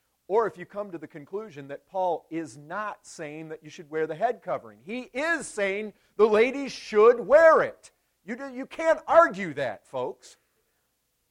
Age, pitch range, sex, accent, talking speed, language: 50-69, 150-225 Hz, male, American, 180 wpm, English